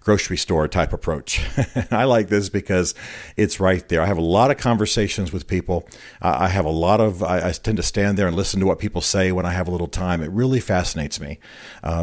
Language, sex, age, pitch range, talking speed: English, male, 40-59, 90-115 Hz, 235 wpm